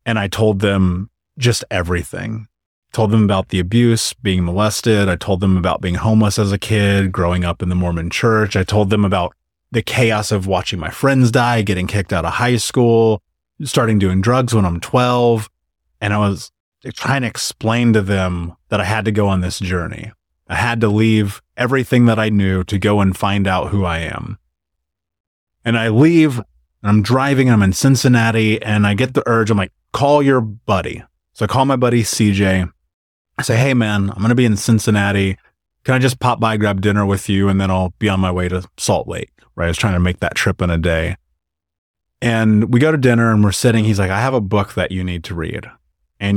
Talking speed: 215 wpm